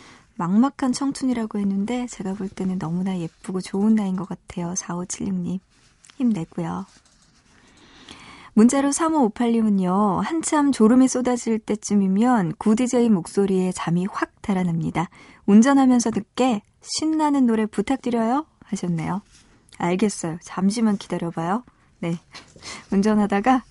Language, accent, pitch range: Korean, native, 185-245 Hz